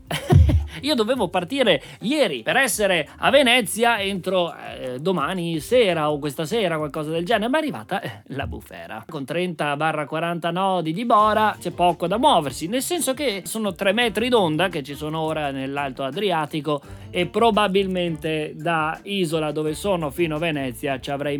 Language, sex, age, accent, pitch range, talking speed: Italian, male, 30-49, native, 145-195 Hz, 165 wpm